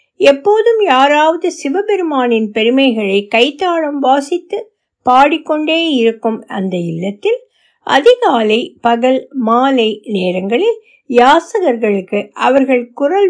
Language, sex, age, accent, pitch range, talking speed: Tamil, female, 60-79, native, 225-335 Hz, 75 wpm